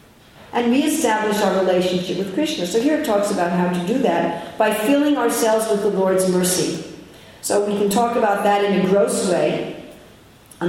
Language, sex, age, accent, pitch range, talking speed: English, female, 50-69, American, 180-220 Hz, 185 wpm